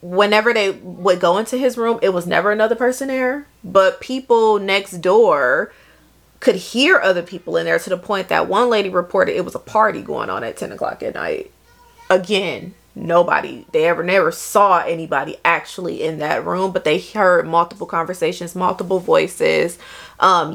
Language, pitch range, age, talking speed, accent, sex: English, 175-235 Hz, 30-49, 175 wpm, American, female